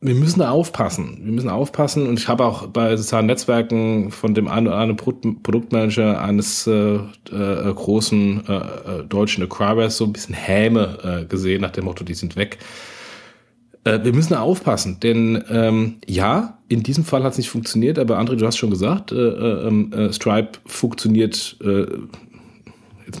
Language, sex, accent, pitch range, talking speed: German, male, German, 100-115 Hz, 170 wpm